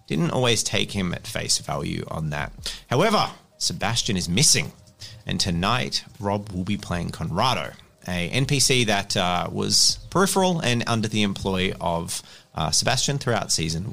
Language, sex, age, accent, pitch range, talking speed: English, male, 30-49, Australian, 100-140 Hz, 150 wpm